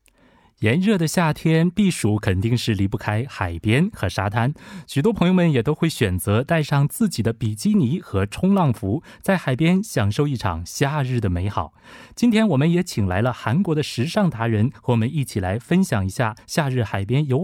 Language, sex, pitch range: Korean, male, 110-165 Hz